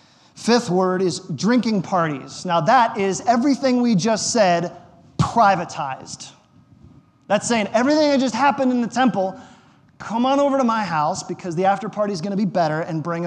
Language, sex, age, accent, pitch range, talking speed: English, male, 30-49, American, 165-205 Hz, 175 wpm